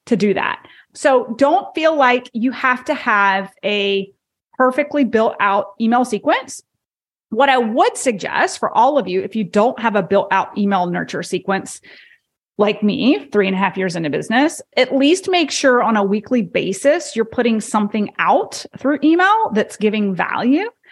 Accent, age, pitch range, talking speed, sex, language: American, 30-49, 205-280 Hz, 175 wpm, female, English